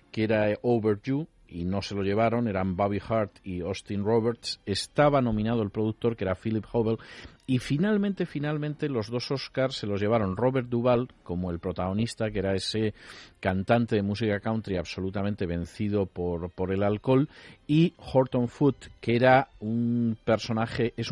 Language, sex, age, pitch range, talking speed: Spanish, male, 40-59, 95-125 Hz, 160 wpm